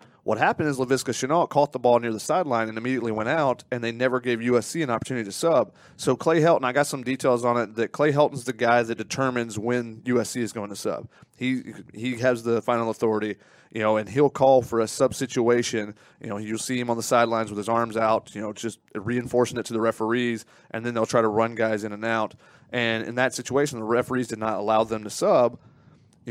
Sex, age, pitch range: male, 30-49, 115-130 Hz